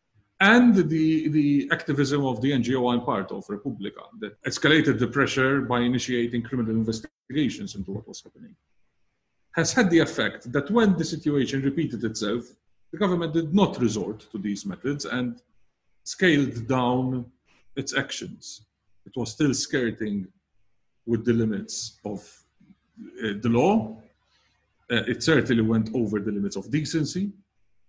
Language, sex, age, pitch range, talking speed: English, male, 50-69, 110-150 Hz, 140 wpm